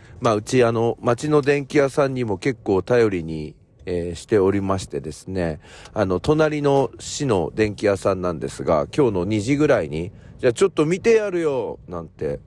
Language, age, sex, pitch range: Japanese, 50-69, male, 85-120 Hz